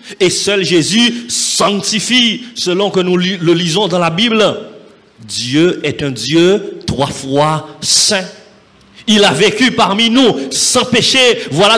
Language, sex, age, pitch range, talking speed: French, male, 50-69, 150-230 Hz, 140 wpm